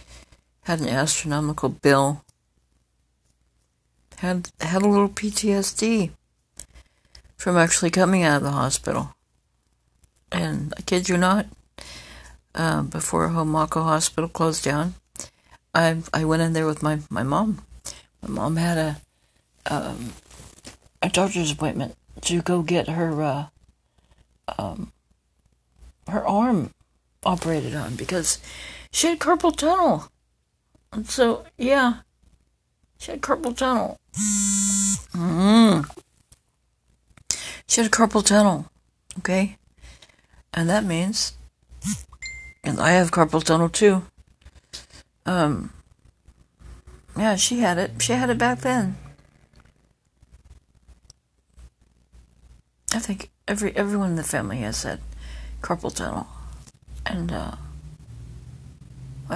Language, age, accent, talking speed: English, 60-79, American, 105 wpm